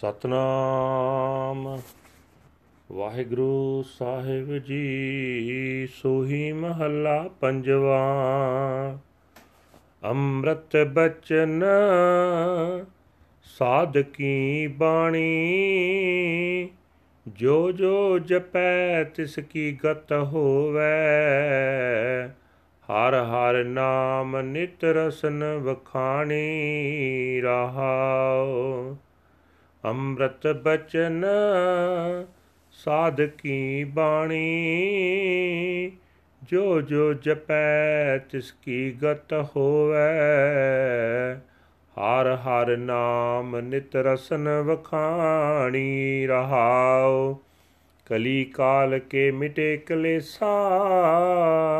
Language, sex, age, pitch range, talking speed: Punjabi, male, 40-59, 130-160 Hz, 55 wpm